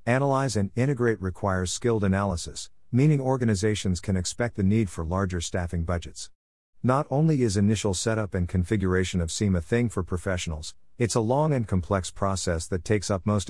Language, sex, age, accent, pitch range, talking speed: English, male, 50-69, American, 90-110 Hz, 175 wpm